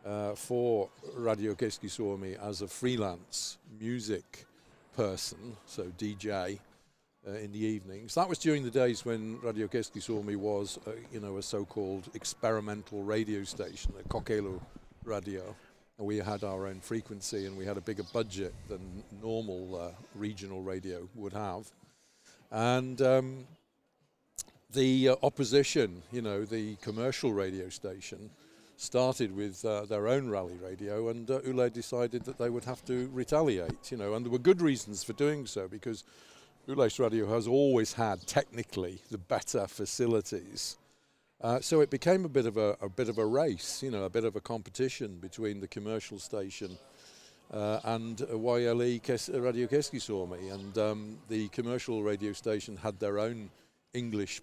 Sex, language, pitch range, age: male, Finnish, 100-120 Hz, 50-69